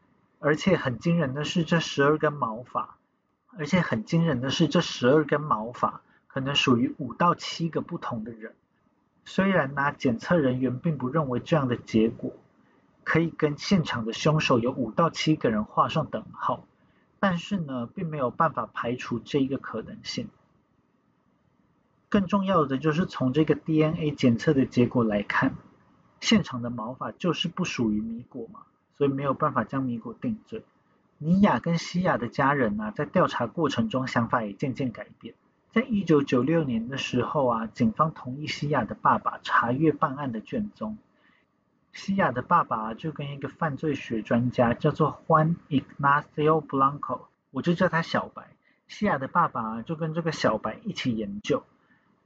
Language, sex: Chinese, male